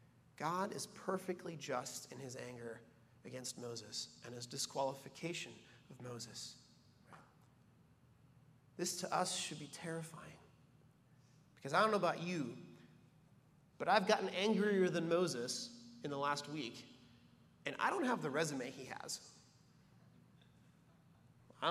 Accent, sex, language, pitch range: American, male, English, 130-175 Hz